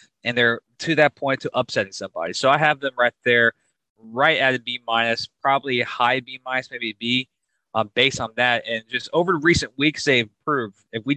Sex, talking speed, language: male, 220 wpm, English